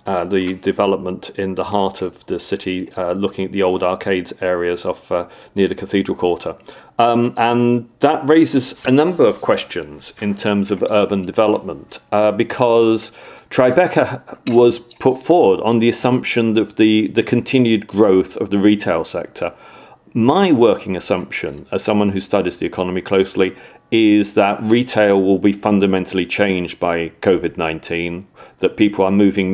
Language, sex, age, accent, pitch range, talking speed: English, male, 40-59, British, 95-110 Hz, 150 wpm